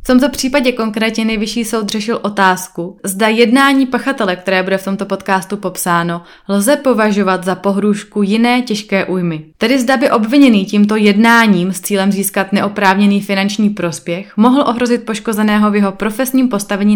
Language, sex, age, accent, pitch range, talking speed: Czech, female, 20-39, native, 185-235 Hz, 150 wpm